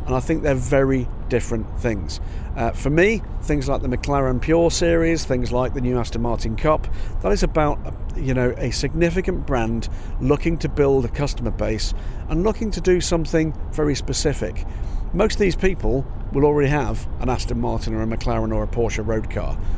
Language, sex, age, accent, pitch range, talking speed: English, male, 50-69, British, 110-140 Hz, 190 wpm